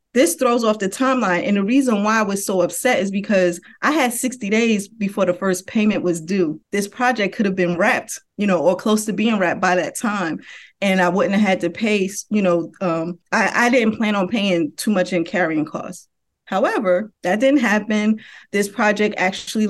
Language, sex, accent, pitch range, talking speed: English, female, American, 185-220 Hz, 210 wpm